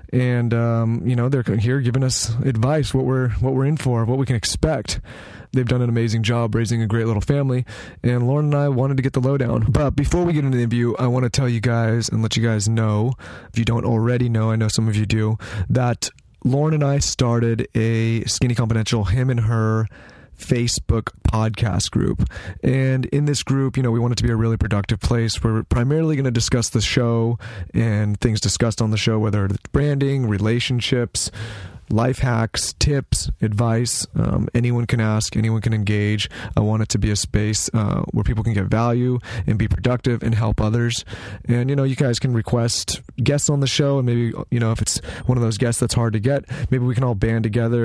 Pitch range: 110-125 Hz